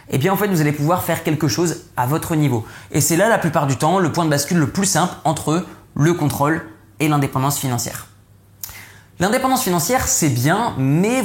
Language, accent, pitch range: French, French, 130-180 Hz